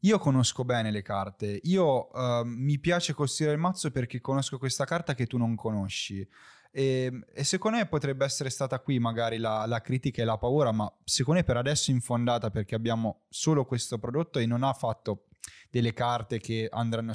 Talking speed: 195 wpm